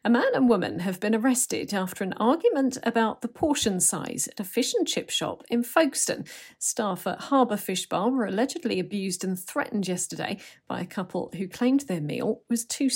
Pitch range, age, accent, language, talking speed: 185-240 Hz, 40-59, British, English, 195 wpm